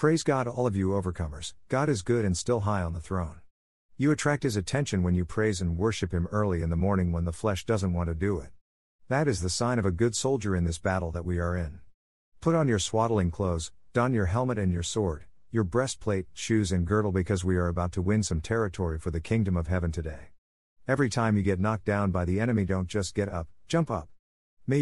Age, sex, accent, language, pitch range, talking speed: 50-69, male, American, English, 85-115 Hz, 235 wpm